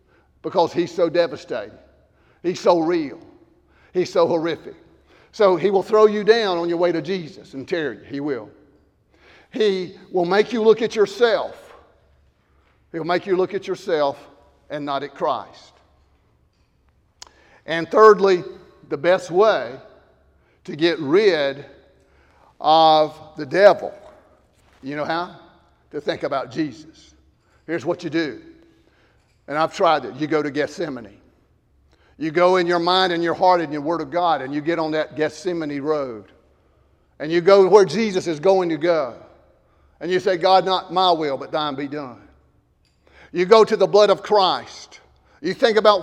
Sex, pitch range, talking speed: male, 155-200 Hz, 160 wpm